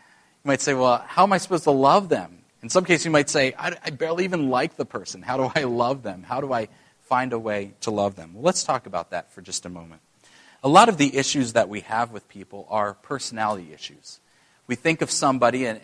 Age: 30-49